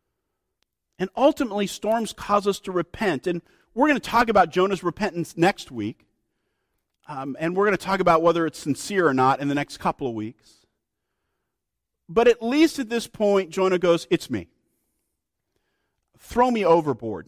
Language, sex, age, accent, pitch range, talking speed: English, male, 50-69, American, 150-205 Hz, 165 wpm